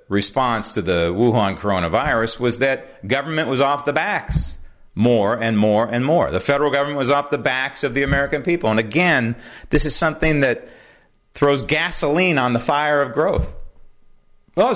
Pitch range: 115-180 Hz